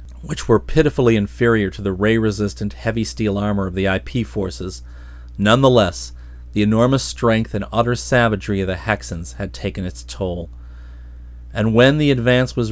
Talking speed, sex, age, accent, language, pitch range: 155 wpm, male, 40-59, American, English, 85-115 Hz